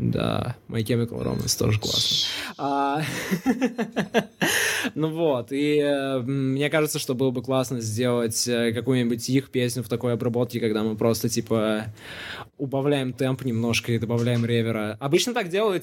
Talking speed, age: 135 wpm, 20-39